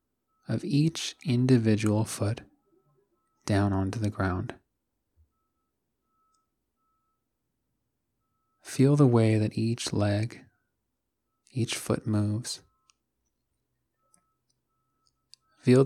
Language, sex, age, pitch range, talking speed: English, male, 30-49, 105-135 Hz, 70 wpm